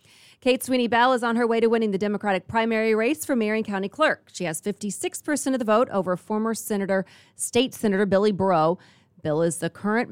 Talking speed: 195 wpm